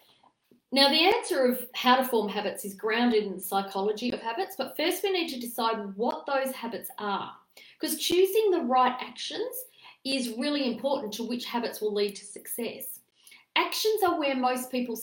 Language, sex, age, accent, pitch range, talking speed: English, female, 40-59, Australian, 215-280 Hz, 180 wpm